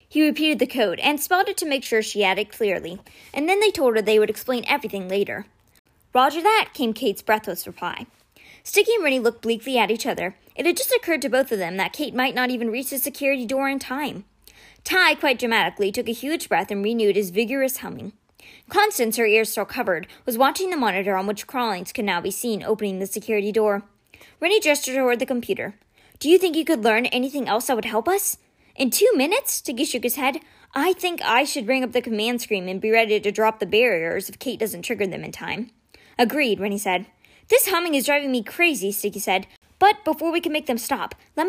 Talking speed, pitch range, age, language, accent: 225 wpm, 220-300 Hz, 20-39, English, American